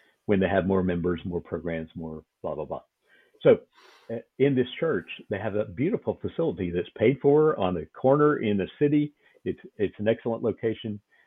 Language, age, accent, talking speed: English, 50-69, American, 180 wpm